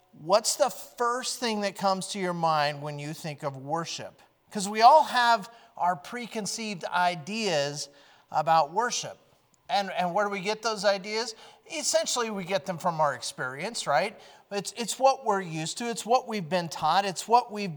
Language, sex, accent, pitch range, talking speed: English, male, American, 165-205 Hz, 180 wpm